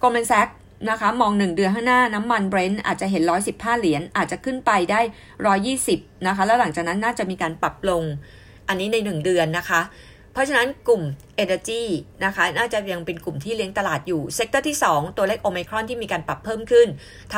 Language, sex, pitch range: Thai, female, 175-230 Hz